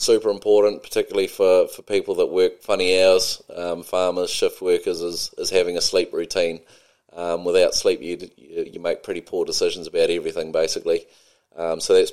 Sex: male